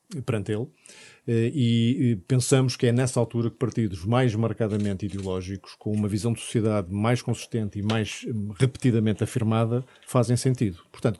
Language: Portuguese